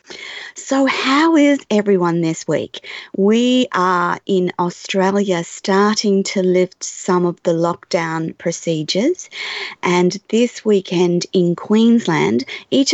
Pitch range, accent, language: 180-205 Hz, Australian, English